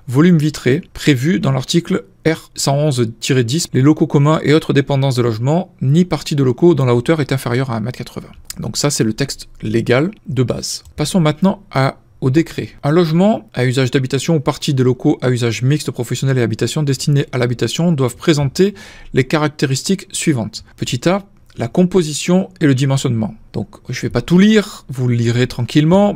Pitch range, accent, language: 125-160 Hz, French, French